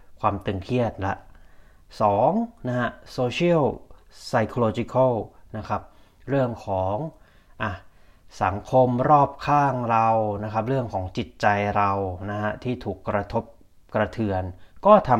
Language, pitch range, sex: Thai, 95-125 Hz, male